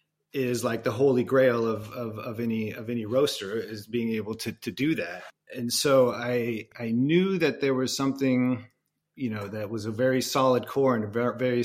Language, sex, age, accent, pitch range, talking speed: English, male, 40-59, American, 110-125 Hz, 200 wpm